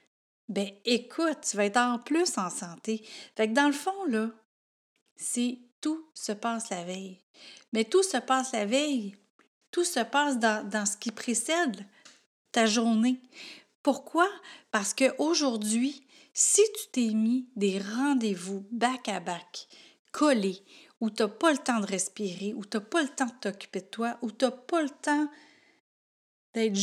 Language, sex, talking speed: French, female, 170 wpm